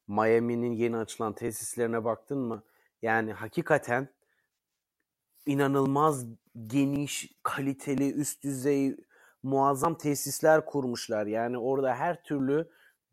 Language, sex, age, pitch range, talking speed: Turkish, male, 30-49, 125-145 Hz, 90 wpm